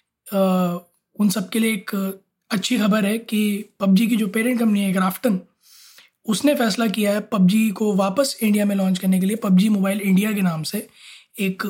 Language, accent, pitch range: Hindi, native, 190-220 Hz